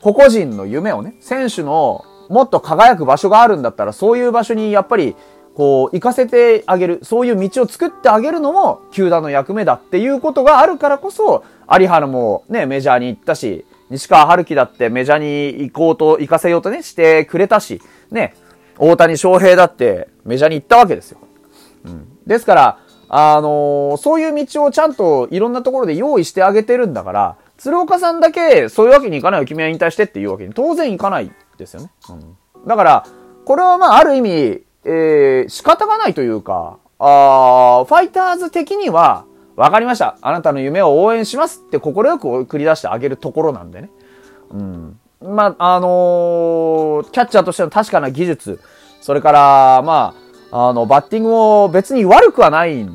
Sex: male